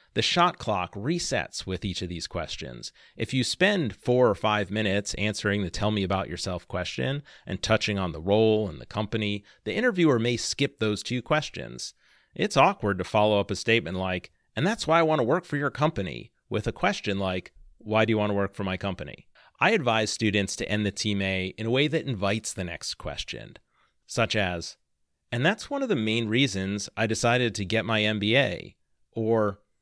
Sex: male